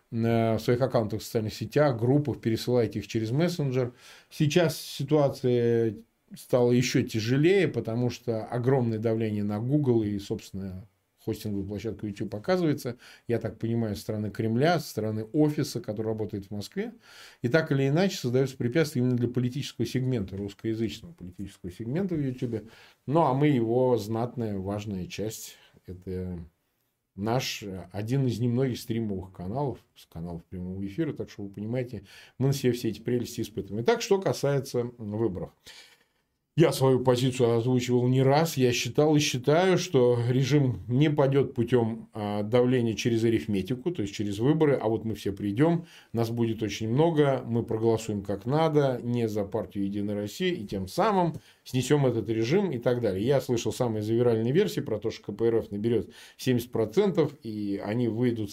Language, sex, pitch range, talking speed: Russian, male, 110-140 Hz, 155 wpm